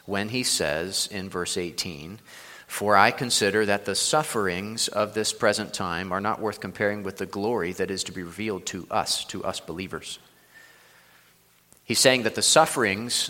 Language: English